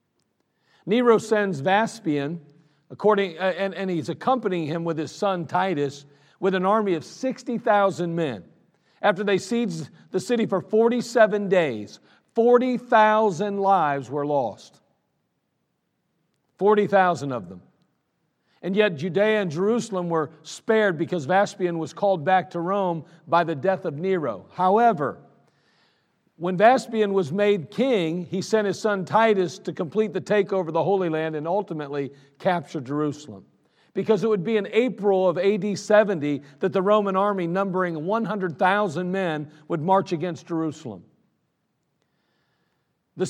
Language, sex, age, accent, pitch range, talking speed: English, male, 50-69, American, 165-210 Hz, 135 wpm